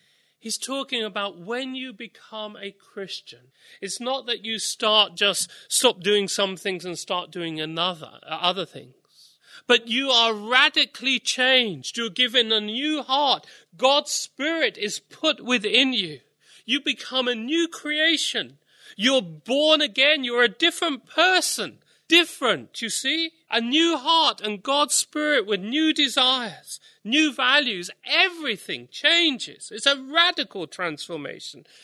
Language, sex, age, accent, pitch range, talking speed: English, male, 40-59, British, 200-270 Hz, 135 wpm